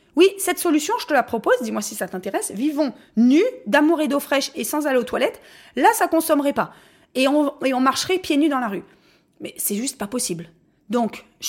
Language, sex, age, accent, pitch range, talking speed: French, female, 30-49, French, 220-300 Hz, 225 wpm